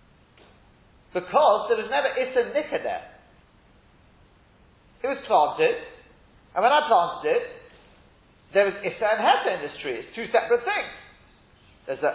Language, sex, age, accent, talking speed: English, male, 40-59, British, 150 wpm